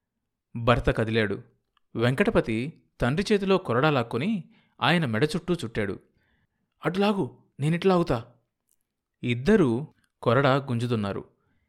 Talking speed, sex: 80 wpm, male